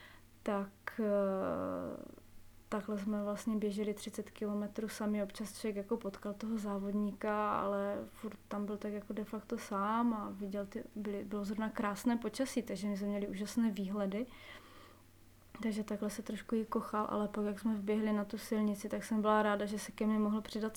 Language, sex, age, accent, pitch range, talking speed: Czech, female, 20-39, native, 205-220 Hz, 175 wpm